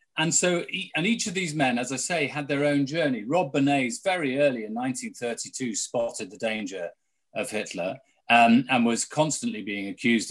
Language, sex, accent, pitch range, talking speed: English, male, British, 105-155 Hz, 180 wpm